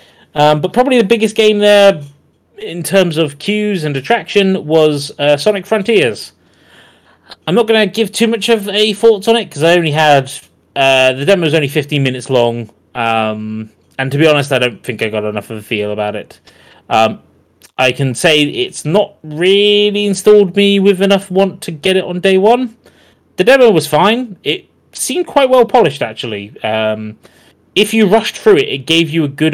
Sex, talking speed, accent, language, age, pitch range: male, 195 wpm, British, English, 30-49, 130-200 Hz